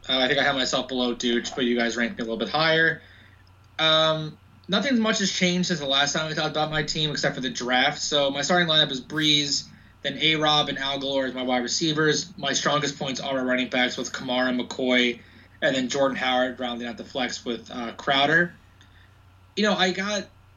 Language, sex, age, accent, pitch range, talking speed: English, male, 20-39, American, 120-150 Hz, 215 wpm